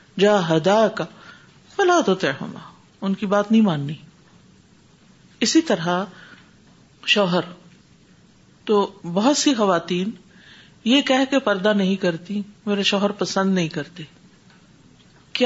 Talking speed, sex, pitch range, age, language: 115 wpm, female, 195-270 Hz, 50-69, Urdu